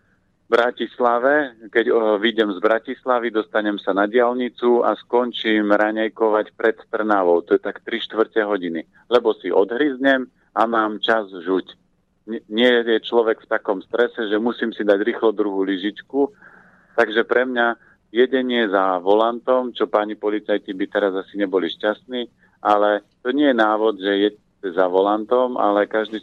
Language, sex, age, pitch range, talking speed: Slovak, male, 40-59, 100-115 Hz, 160 wpm